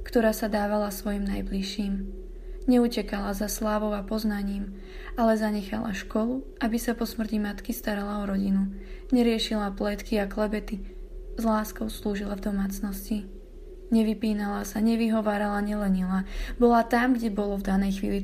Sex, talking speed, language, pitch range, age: female, 135 wpm, Slovak, 200-235 Hz, 20-39